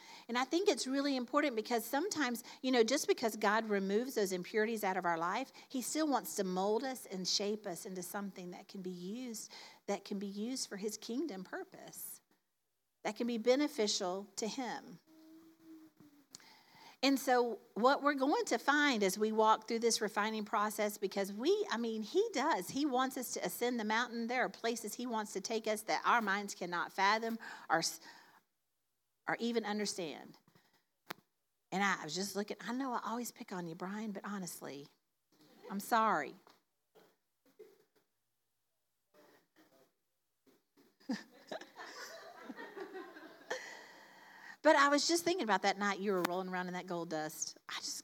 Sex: female